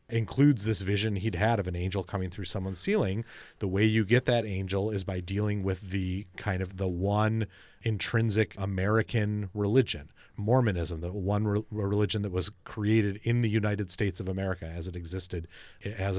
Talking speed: 175 wpm